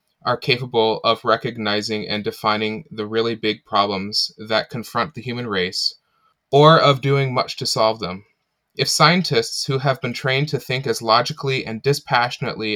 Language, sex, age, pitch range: English, male, 20-39, 110-145 Hz